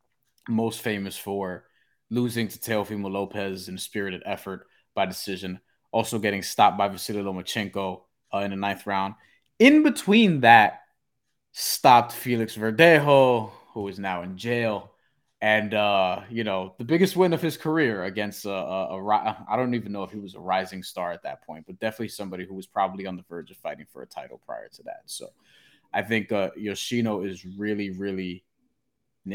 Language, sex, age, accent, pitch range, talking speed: English, male, 20-39, American, 100-125 Hz, 180 wpm